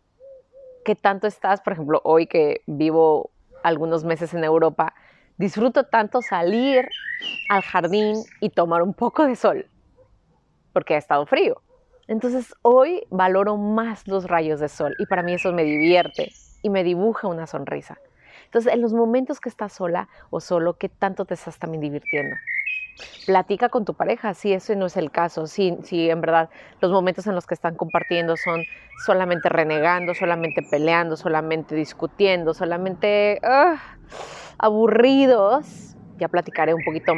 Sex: female